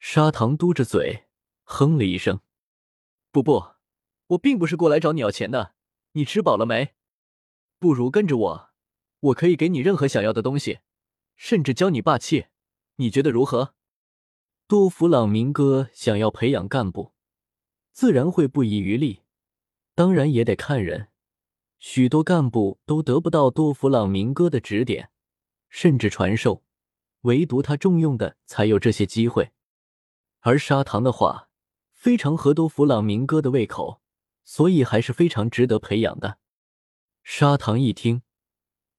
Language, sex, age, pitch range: Chinese, male, 20-39, 110-160 Hz